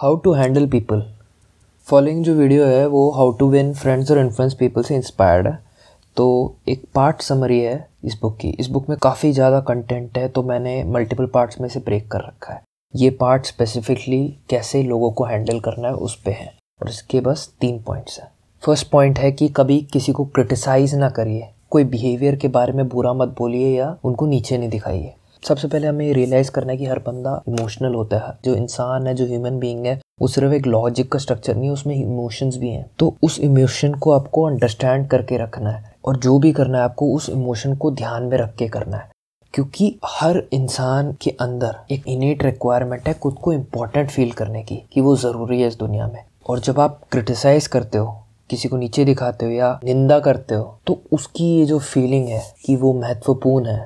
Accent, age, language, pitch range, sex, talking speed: native, 20-39, Hindi, 120-140 Hz, male, 215 wpm